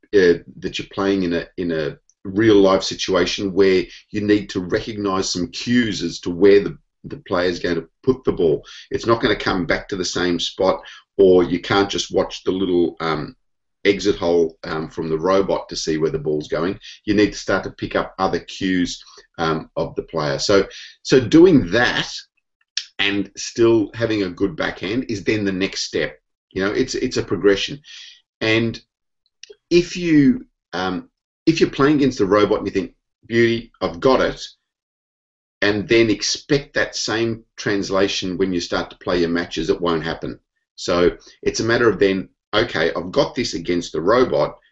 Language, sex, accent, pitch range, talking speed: English, male, Australian, 85-115 Hz, 190 wpm